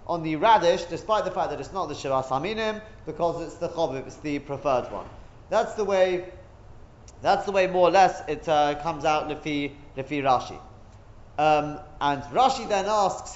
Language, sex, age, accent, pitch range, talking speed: English, male, 30-49, British, 150-200 Hz, 180 wpm